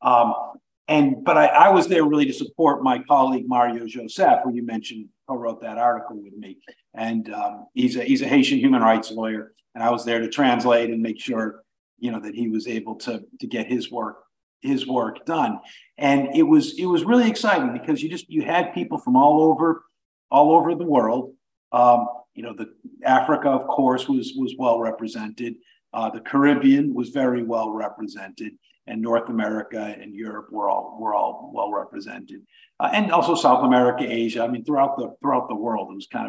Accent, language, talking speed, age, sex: American, English, 200 wpm, 50-69, male